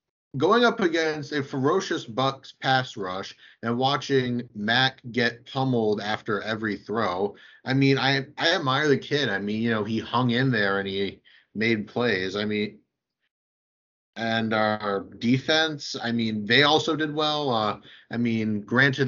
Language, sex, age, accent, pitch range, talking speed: English, male, 30-49, American, 110-140 Hz, 160 wpm